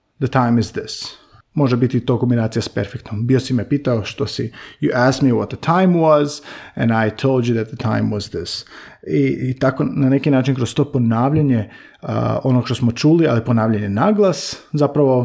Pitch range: 115-155 Hz